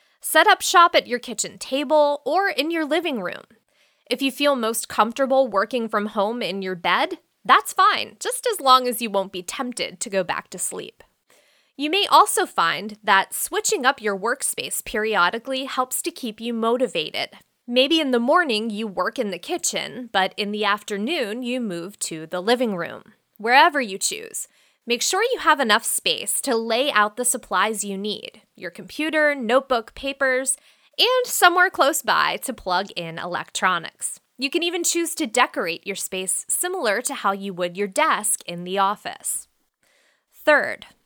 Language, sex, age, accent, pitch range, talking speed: English, female, 20-39, American, 200-290 Hz, 175 wpm